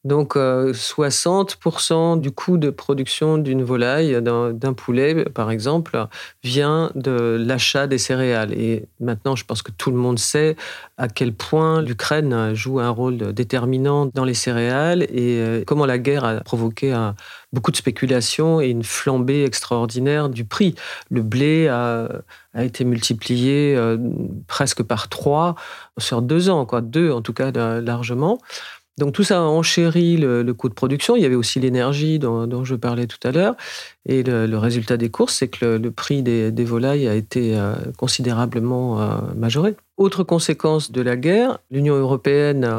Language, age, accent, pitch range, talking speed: French, 40-59, French, 120-150 Hz, 175 wpm